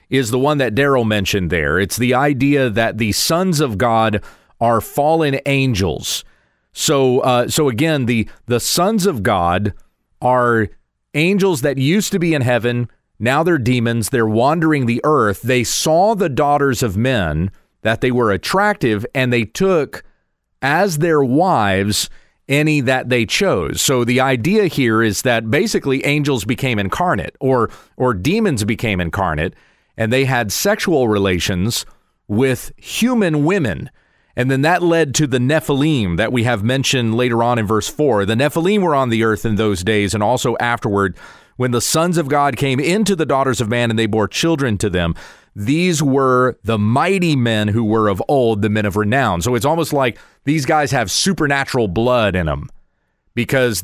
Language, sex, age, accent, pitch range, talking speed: English, male, 40-59, American, 110-145 Hz, 175 wpm